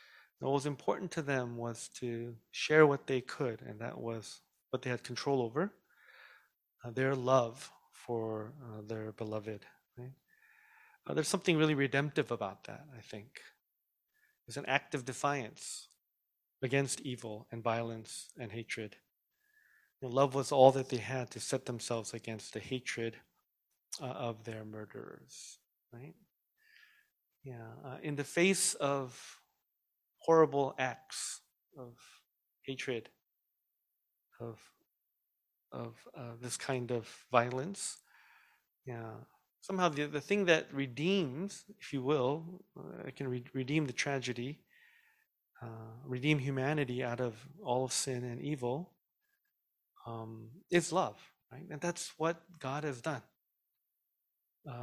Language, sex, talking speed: English, male, 130 wpm